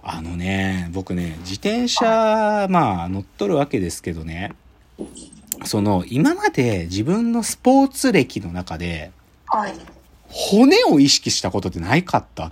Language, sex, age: Japanese, male, 40-59